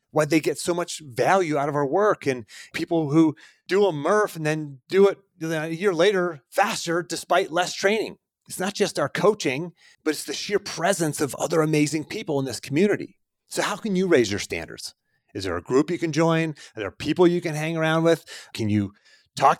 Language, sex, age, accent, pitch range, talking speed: English, male, 30-49, American, 130-175 Hz, 210 wpm